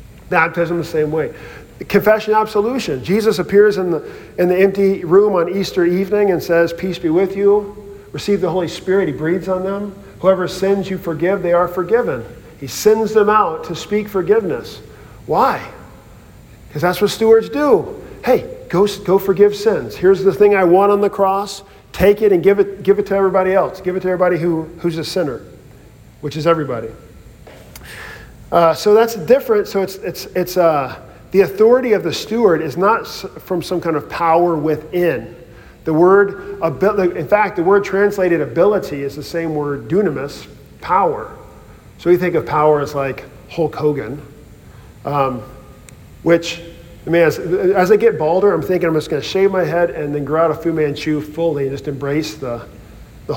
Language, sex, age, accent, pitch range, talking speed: English, male, 50-69, American, 155-200 Hz, 180 wpm